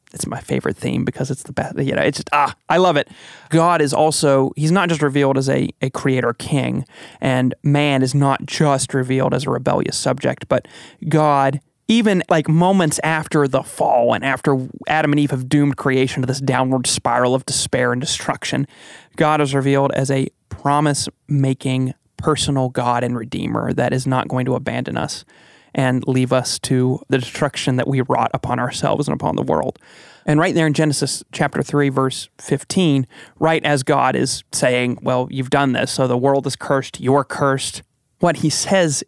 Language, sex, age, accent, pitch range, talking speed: English, male, 30-49, American, 130-150 Hz, 185 wpm